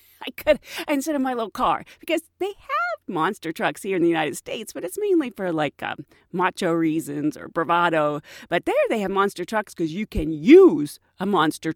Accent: American